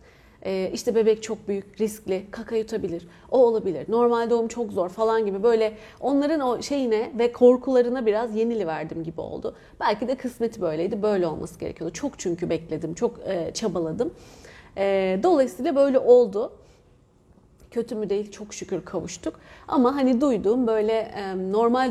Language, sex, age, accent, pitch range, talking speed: Turkish, female, 30-49, native, 185-240 Hz, 140 wpm